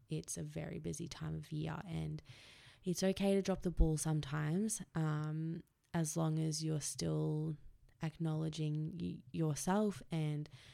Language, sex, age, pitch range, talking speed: English, female, 20-39, 145-170 Hz, 140 wpm